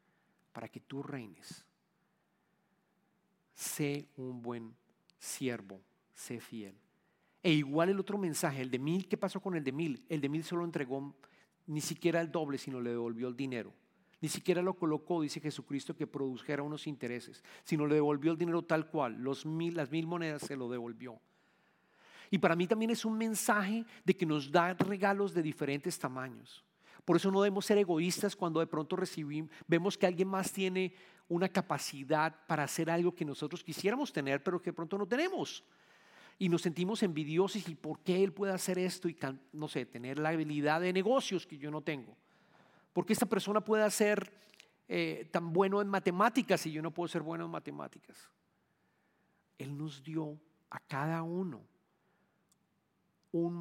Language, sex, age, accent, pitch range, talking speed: English, male, 40-59, Mexican, 150-190 Hz, 175 wpm